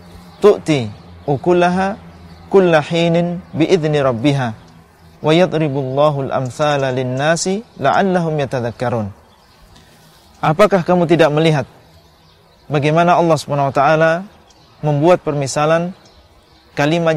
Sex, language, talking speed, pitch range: male, Indonesian, 85 wpm, 120-160 Hz